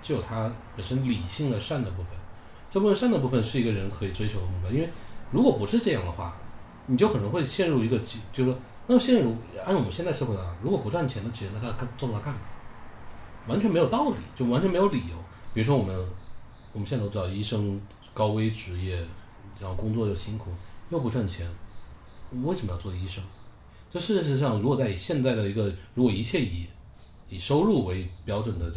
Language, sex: English, male